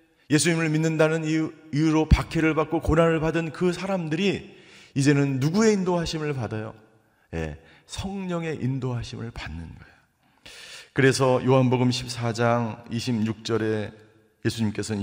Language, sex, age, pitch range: Korean, male, 40-59, 115-165 Hz